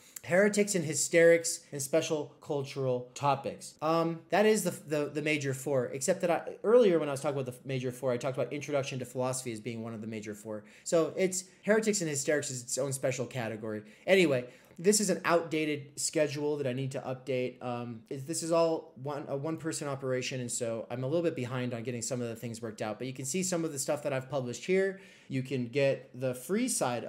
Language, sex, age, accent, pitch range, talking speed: English, male, 30-49, American, 130-160 Hz, 225 wpm